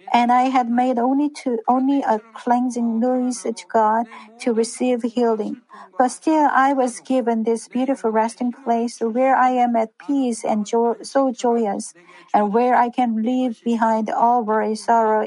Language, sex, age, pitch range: Korean, female, 50-69, 225-260 Hz